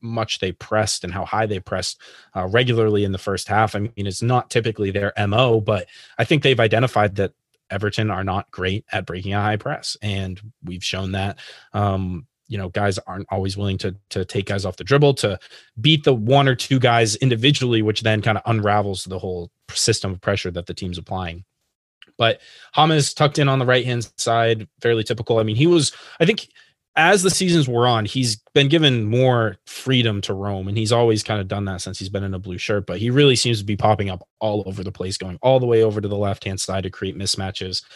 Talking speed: 225 wpm